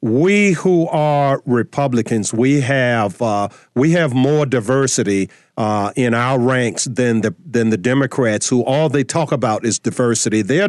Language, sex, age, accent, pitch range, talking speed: English, male, 50-69, American, 120-155 Hz, 155 wpm